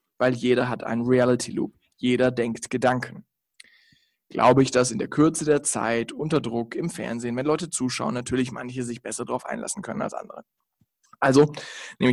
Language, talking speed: German, 170 wpm